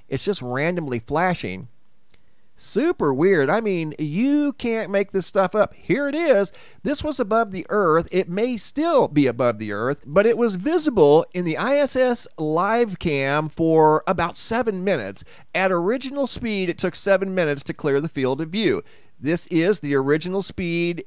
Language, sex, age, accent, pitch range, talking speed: English, male, 40-59, American, 145-205 Hz, 170 wpm